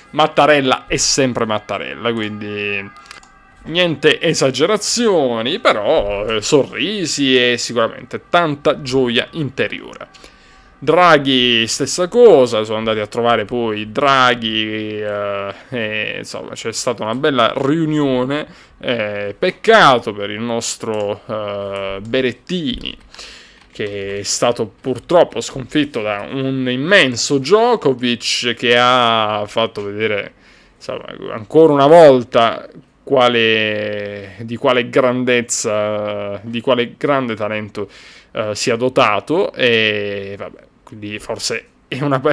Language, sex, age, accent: Italian, male, 20-39, native